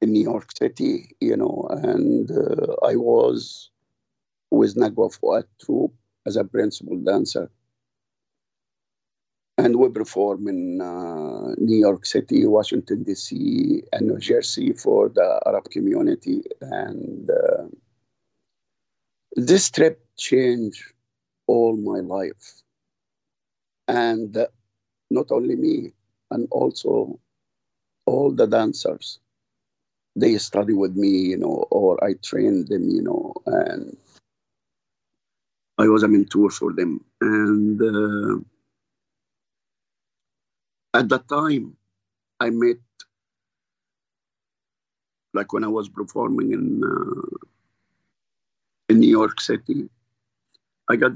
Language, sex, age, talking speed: English, male, 50-69, 105 wpm